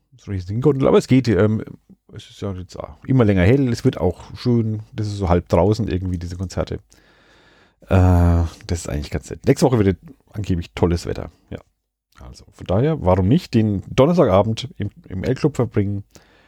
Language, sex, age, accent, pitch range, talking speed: German, male, 40-59, German, 90-115 Hz, 175 wpm